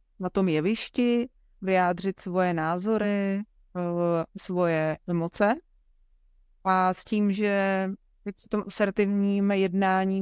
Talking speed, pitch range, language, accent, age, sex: 95 wpm, 175-200 Hz, Czech, native, 30-49, female